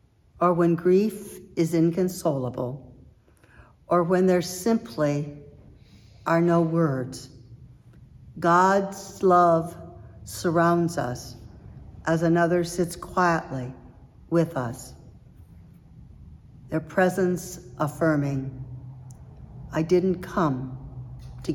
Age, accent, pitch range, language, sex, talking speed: 60-79, American, 130-180 Hz, English, female, 80 wpm